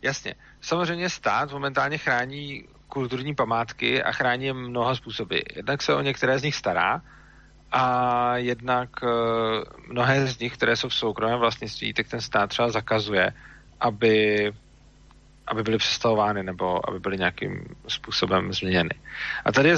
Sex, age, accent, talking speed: male, 40-59, native, 145 wpm